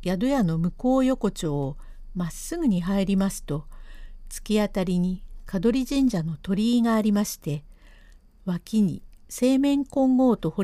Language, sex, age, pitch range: Japanese, female, 50-69, 160-230 Hz